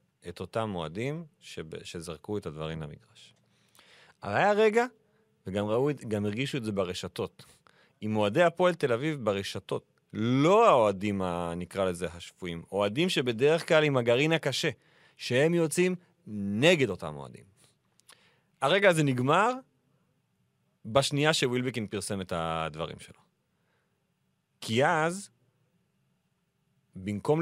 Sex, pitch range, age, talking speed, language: male, 105-165 Hz, 40-59, 110 wpm, Hebrew